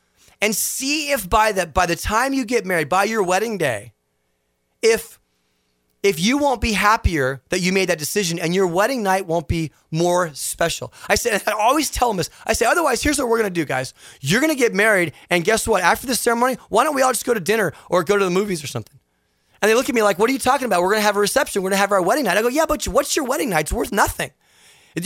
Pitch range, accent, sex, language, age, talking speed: 170-245 Hz, American, male, English, 30-49, 270 wpm